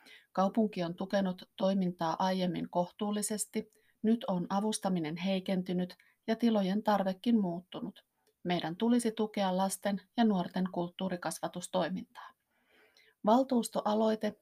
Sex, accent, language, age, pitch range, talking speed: female, native, Finnish, 30-49, 180-210 Hz, 90 wpm